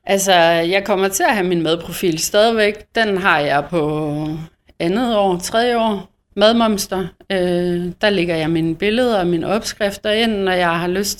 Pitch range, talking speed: 175-205 Hz, 170 wpm